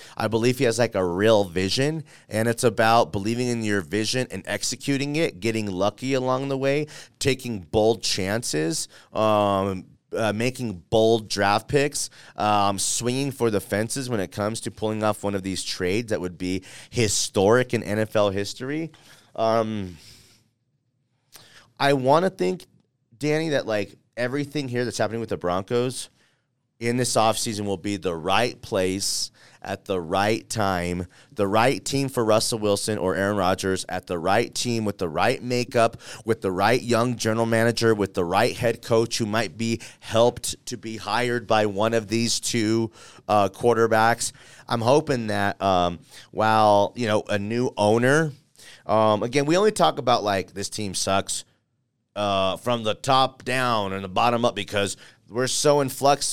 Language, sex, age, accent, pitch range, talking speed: English, male, 30-49, American, 100-125 Hz, 165 wpm